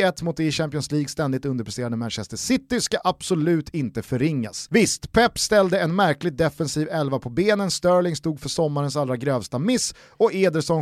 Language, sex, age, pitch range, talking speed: Swedish, male, 30-49, 130-190 Hz, 170 wpm